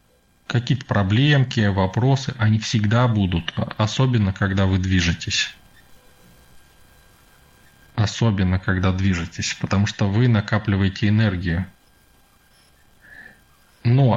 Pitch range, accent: 95-115 Hz, native